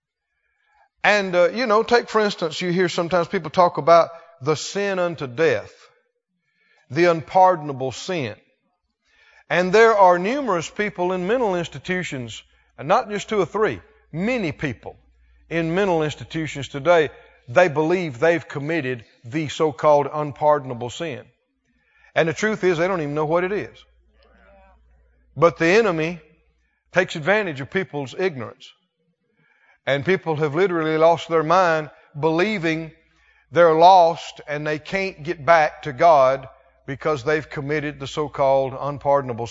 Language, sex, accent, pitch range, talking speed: English, male, American, 140-185 Hz, 135 wpm